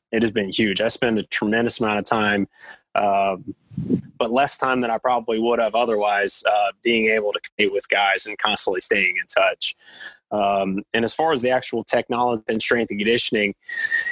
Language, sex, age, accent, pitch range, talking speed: English, male, 20-39, American, 105-130 Hz, 190 wpm